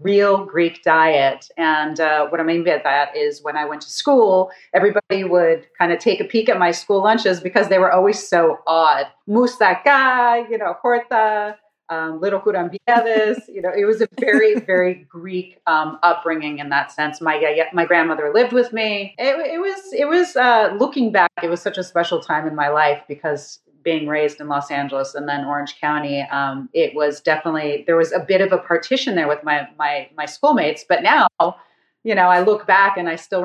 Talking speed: 200 wpm